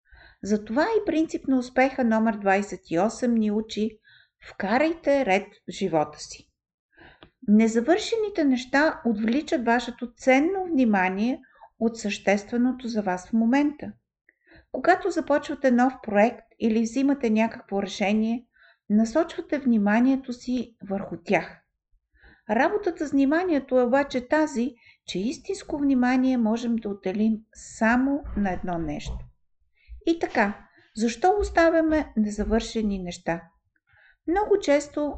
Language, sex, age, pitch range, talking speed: Bulgarian, female, 50-69, 215-275 Hz, 110 wpm